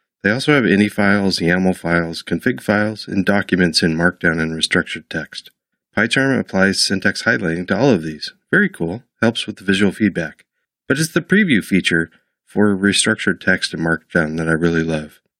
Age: 40-59